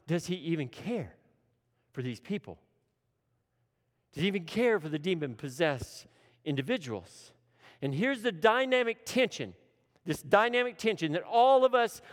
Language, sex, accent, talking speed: English, male, American, 135 wpm